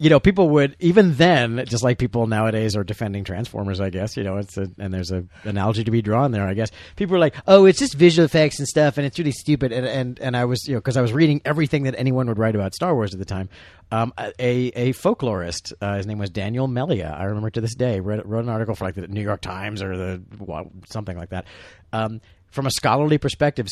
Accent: American